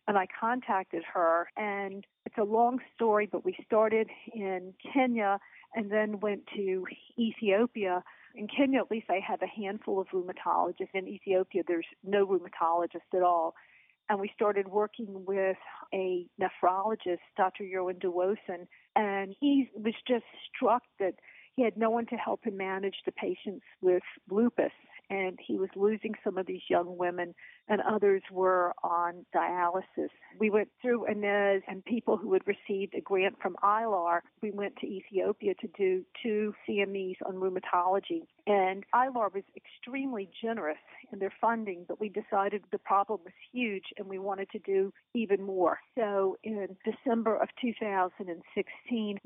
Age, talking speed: 50-69, 155 wpm